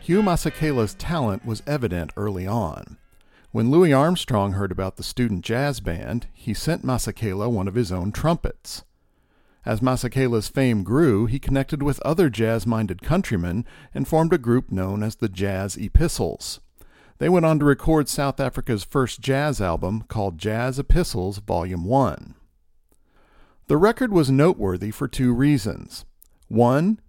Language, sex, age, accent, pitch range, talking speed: English, male, 50-69, American, 100-140 Hz, 150 wpm